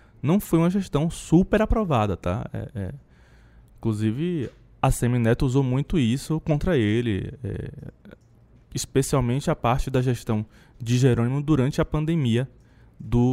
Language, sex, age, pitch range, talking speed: Portuguese, male, 20-39, 110-150 Hz, 130 wpm